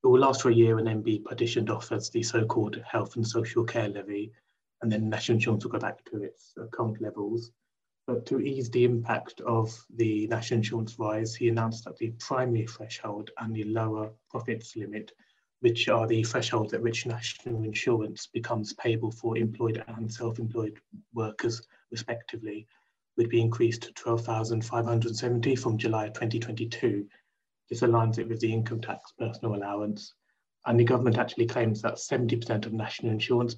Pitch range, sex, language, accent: 110-120 Hz, male, English, British